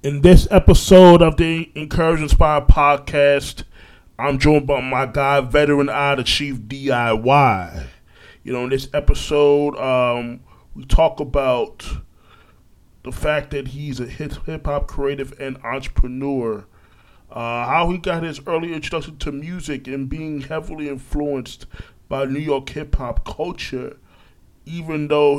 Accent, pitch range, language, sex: American, 120-145 Hz, English, male